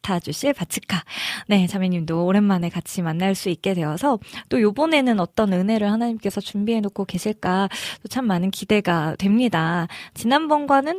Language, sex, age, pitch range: Korean, female, 20-39, 180-225 Hz